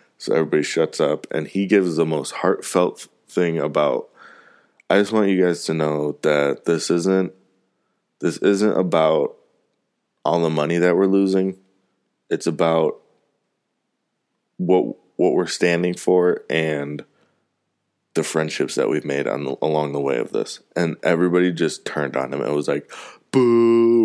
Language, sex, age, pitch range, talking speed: English, male, 20-39, 90-135 Hz, 150 wpm